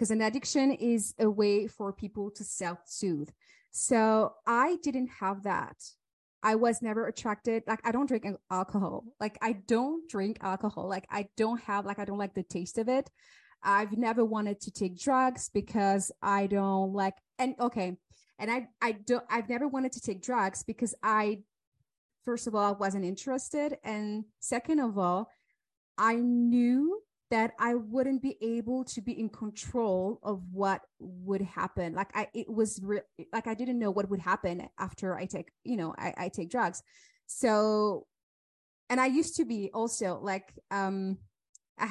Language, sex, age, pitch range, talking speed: English, female, 20-39, 195-240 Hz, 170 wpm